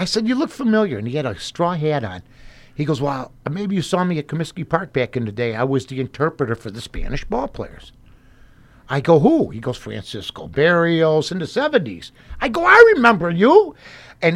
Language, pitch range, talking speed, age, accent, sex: English, 125-170 Hz, 210 wpm, 60-79, American, male